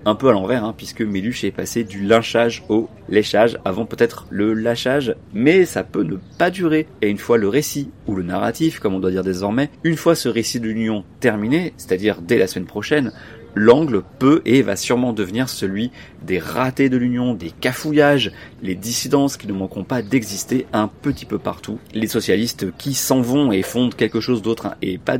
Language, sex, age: French, male, 30-49